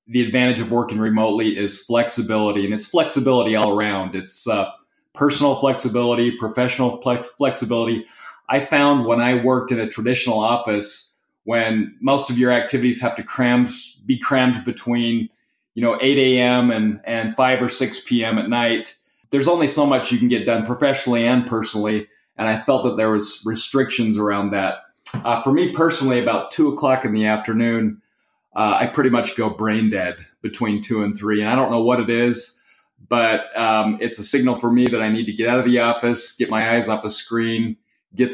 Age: 30-49